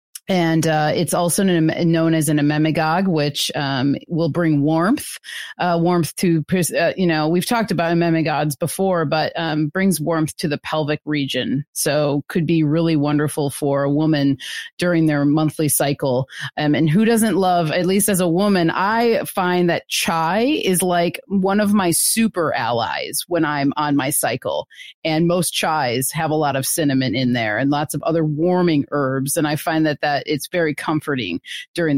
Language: English